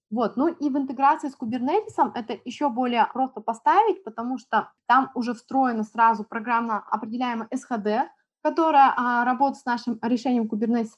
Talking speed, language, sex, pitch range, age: 150 wpm, Russian, female, 215-265 Hz, 20-39